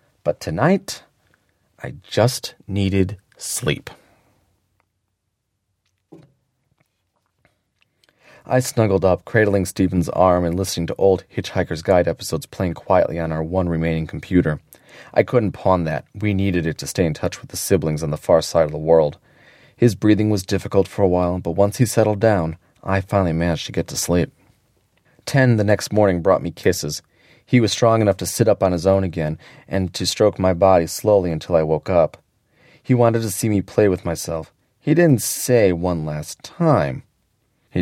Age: 30-49